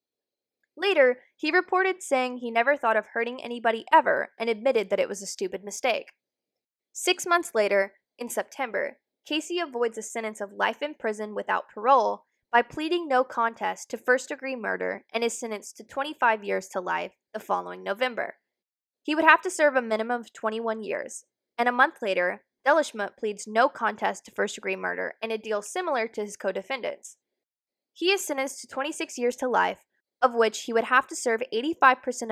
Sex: female